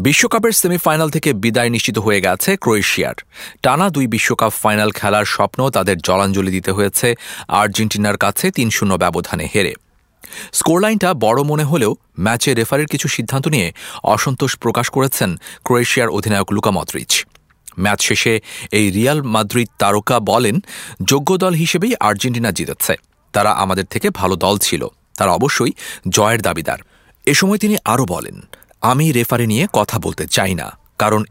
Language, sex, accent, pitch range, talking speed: English, male, Indian, 100-145 Hz, 115 wpm